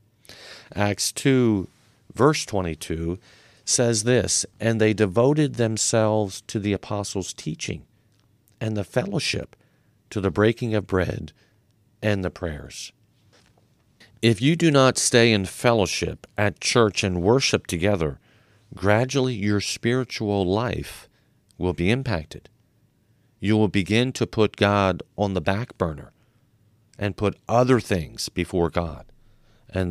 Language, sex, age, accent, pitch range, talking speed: English, male, 50-69, American, 95-115 Hz, 120 wpm